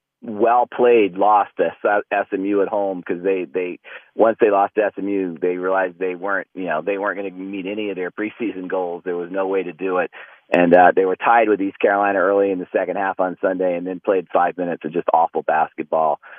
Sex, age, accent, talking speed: male, 40-59, American, 225 wpm